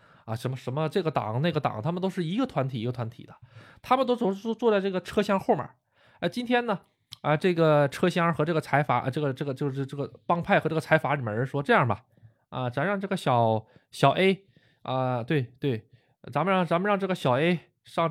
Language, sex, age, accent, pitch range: Chinese, male, 20-39, native, 125-180 Hz